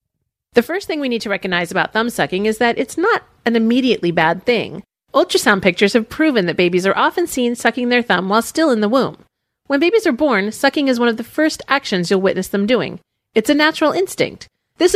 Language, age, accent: English, 40-59, American